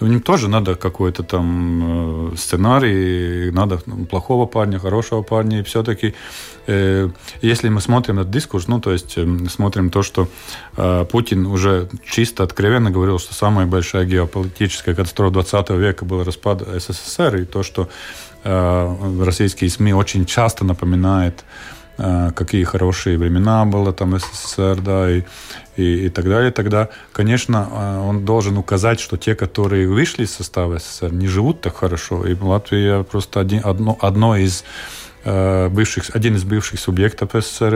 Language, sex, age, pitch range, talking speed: Russian, male, 30-49, 90-110 Hz, 150 wpm